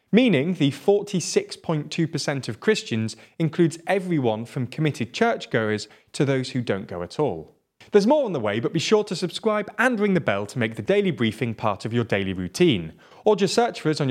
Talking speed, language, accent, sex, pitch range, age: 200 wpm, English, British, male, 120-185 Hz, 30-49